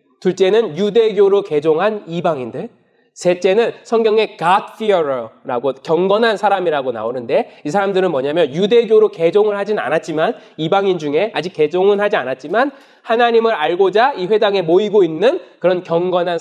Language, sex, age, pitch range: Korean, male, 20-39, 185-260 Hz